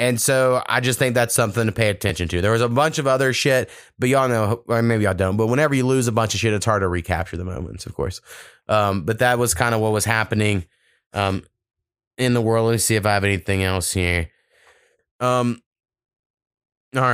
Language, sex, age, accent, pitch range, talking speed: English, male, 30-49, American, 95-125 Hz, 230 wpm